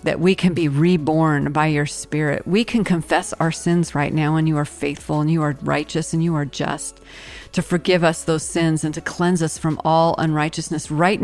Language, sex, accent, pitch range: English, female, American, 150-175 Hz